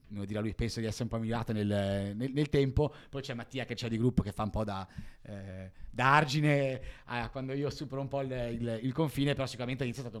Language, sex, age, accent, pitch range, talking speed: Italian, male, 30-49, native, 115-135 Hz, 240 wpm